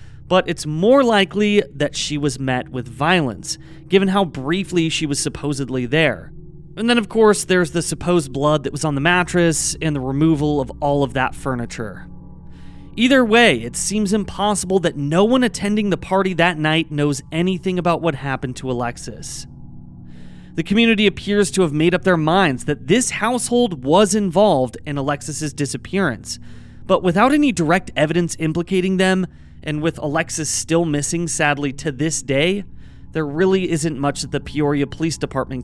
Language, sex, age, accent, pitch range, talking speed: English, male, 30-49, American, 140-190 Hz, 170 wpm